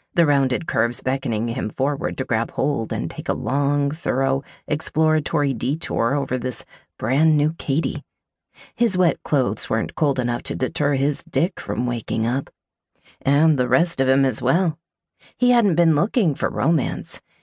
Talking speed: 160 wpm